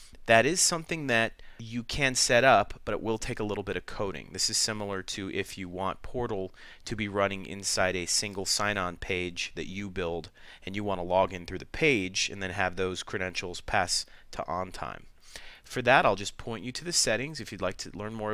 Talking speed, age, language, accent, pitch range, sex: 225 wpm, 30-49, English, American, 95-120 Hz, male